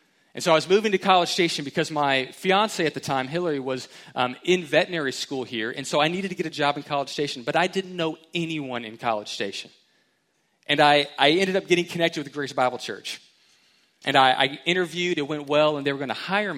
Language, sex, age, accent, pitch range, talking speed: English, male, 30-49, American, 135-180 Hz, 235 wpm